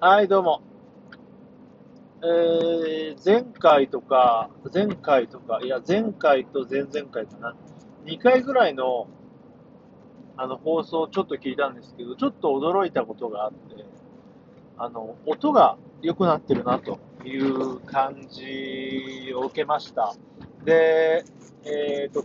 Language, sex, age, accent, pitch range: Japanese, male, 40-59, native, 130-205 Hz